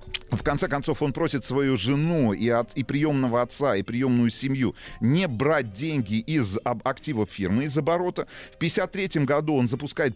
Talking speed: 160 wpm